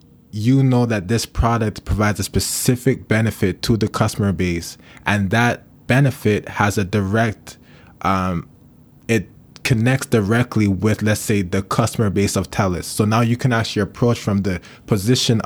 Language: English